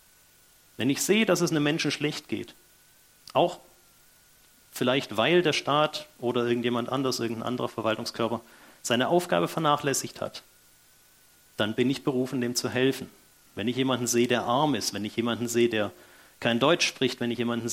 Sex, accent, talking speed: male, German, 165 wpm